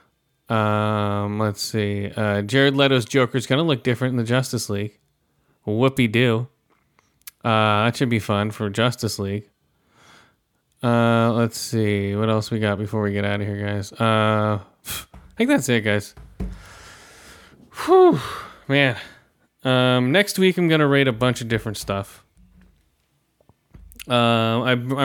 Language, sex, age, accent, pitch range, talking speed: English, male, 20-39, American, 105-130 Hz, 145 wpm